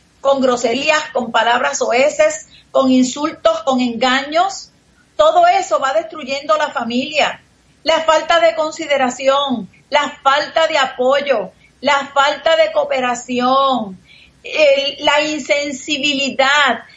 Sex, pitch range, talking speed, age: female, 280-345 Hz, 105 wpm, 40-59